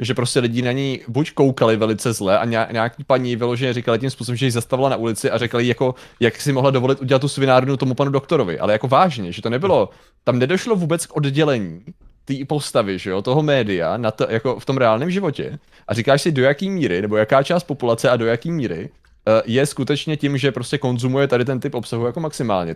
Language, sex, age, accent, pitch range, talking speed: Czech, male, 20-39, native, 115-140 Hz, 220 wpm